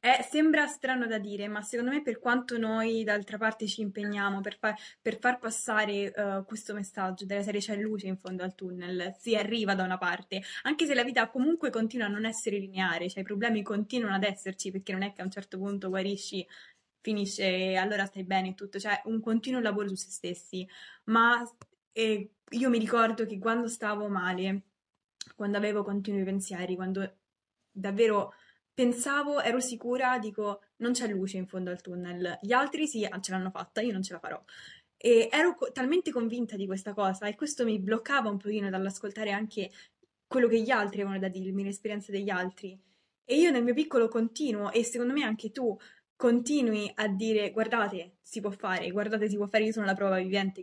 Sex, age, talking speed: female, 20-39, 195 wpm